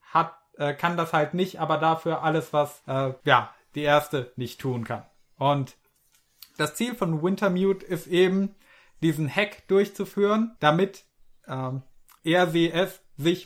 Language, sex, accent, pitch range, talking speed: German, male, German, 140-180 Hz, 140 wpm